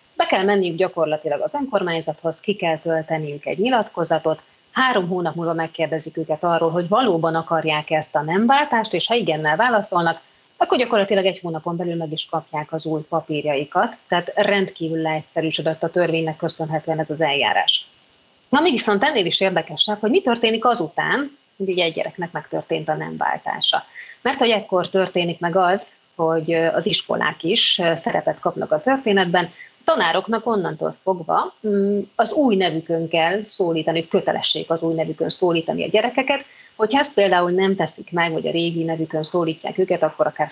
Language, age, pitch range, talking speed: Hungarian, 30-49, 160-205 Hz, 160 wpm